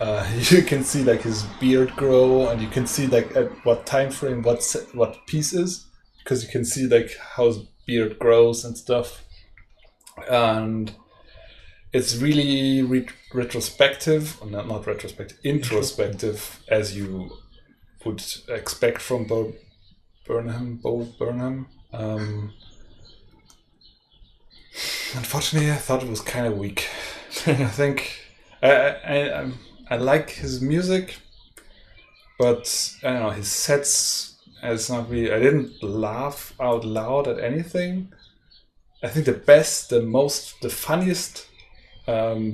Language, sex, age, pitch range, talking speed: English, male, 20-39, 110-140 Hz, 135 wpm